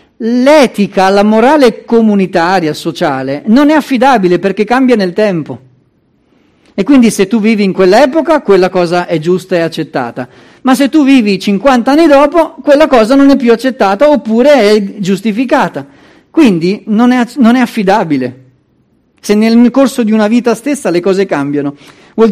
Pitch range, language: 155-235 Hz, Italian